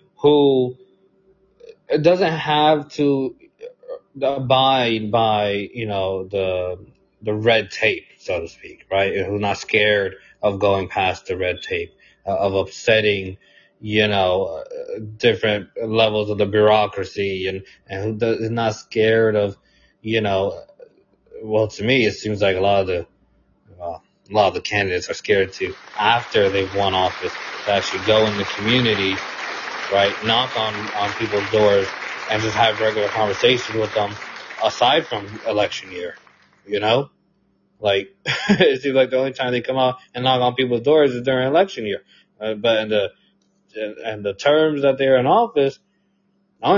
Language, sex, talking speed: English, male, 160 wpm